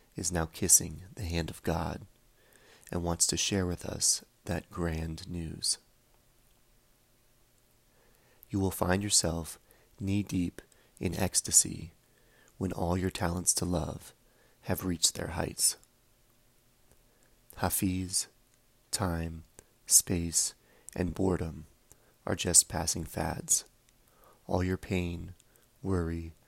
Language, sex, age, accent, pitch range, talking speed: English, male, 30-49, American, 85-110 Hz, 105 wpm